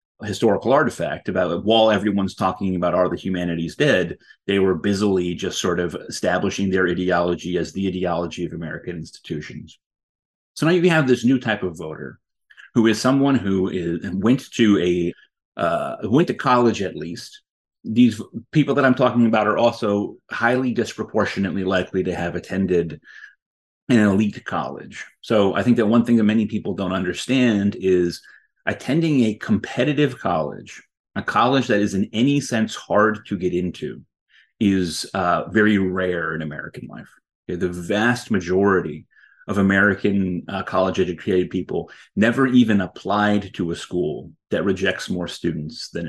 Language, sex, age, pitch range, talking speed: English, male, 30-49, 90-115 Hz, 160 wpm